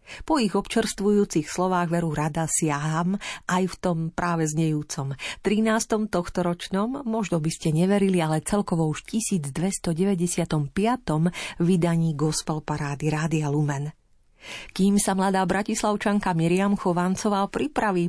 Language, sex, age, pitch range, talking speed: Slovak, female, 40-59, 155-210 Hz, 110 wpm